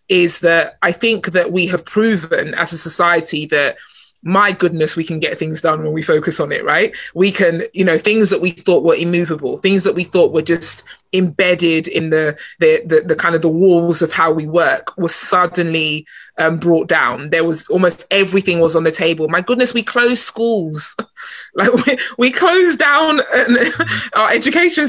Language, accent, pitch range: English, British, 170-220 Hz